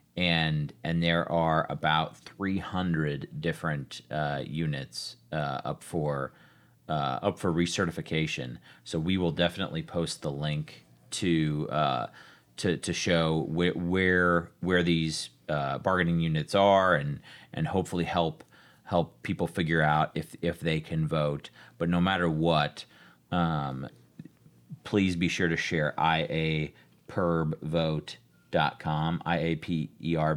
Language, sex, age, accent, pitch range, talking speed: English, male, 30-49, American, 75-85 Hz, 140 wpm